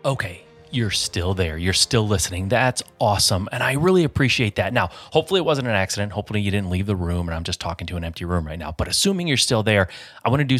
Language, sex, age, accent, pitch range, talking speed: English, male, 30-49, American, 95-125 Hz, 255 wpm